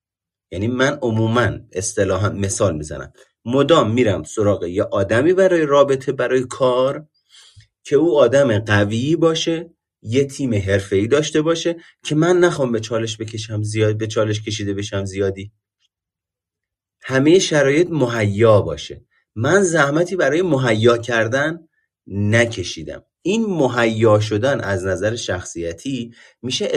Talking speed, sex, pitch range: 120 wpm, male, 100-145 Hz